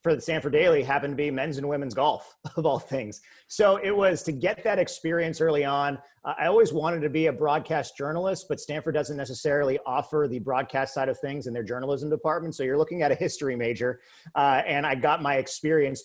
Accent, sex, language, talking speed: American, male, English, 220 wpm